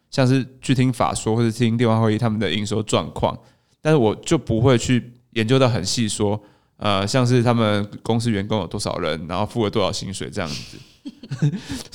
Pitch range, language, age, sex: 110-135 Hz, Chinese, 20-39, male